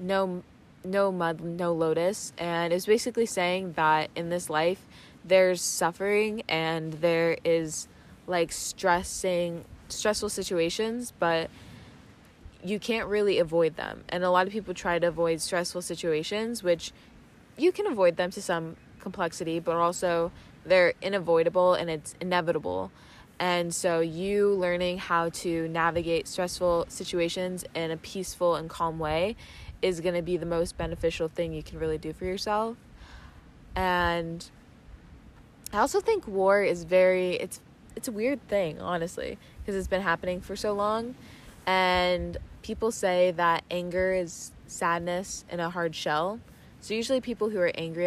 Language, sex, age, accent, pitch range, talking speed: English, female, 20-39, American, 165-185 Hz, 145 wpm